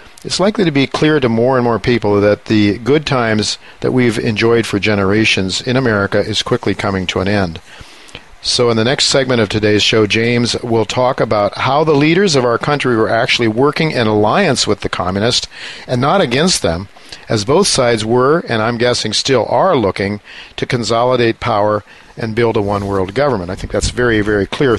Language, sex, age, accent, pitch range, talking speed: English, male, 50-69, American, 105-125 Hz, 195 wpm